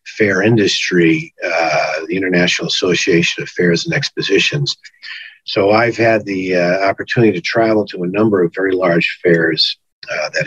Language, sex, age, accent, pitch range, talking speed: English, male, 50-69, American, 95-135 Hz, 155 wpm